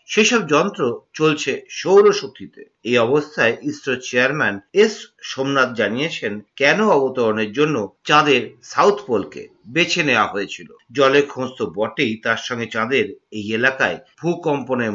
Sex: male